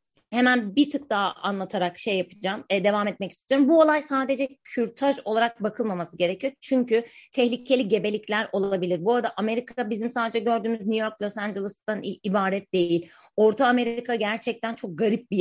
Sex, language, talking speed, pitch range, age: female, Turkish, 155 wpm, 205-245 Hz, 30-49